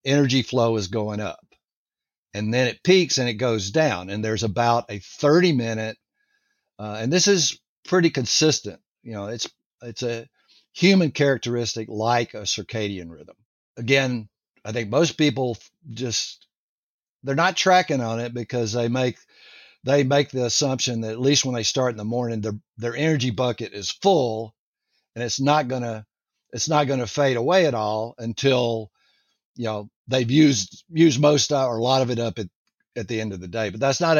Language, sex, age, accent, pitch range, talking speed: English, male, 60-79, American, 110-140 Hz, 180 wpm